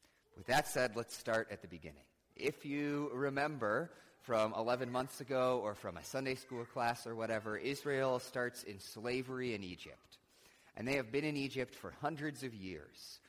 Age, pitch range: 30-49, 95-125 Hz